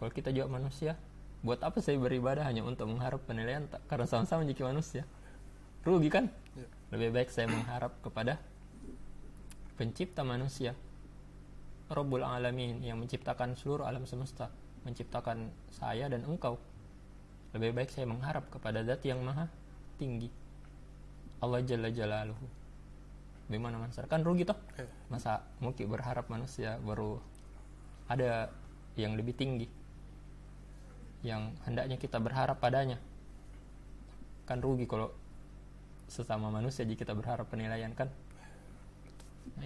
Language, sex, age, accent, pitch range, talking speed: Indonesian, male, 20-39, native, 115-135 Hz, 115 wpm